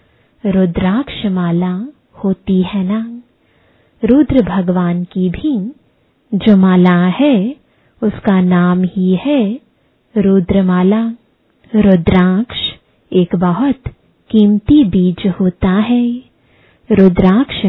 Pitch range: 185-240 Hz